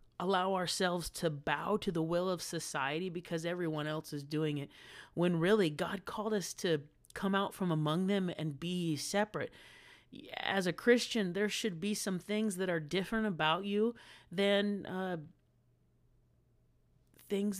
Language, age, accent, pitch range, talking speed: English, 30-49, American, 155-195 Hz, 155 wpm